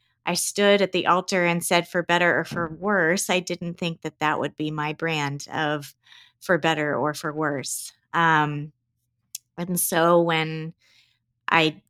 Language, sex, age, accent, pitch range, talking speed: English, female, 20-39, American, 145-175 Hz, 160 wpm